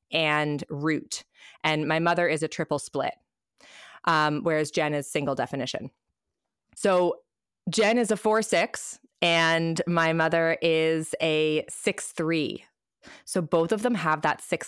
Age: 20-39